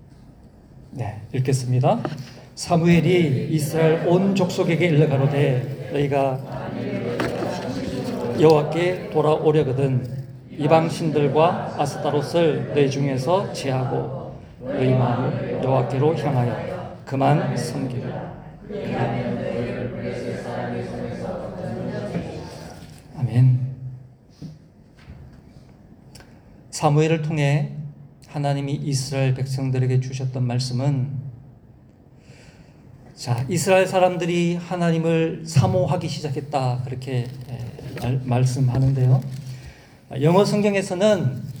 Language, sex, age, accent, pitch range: Korean, male, 40-59, native, 130-160 Hz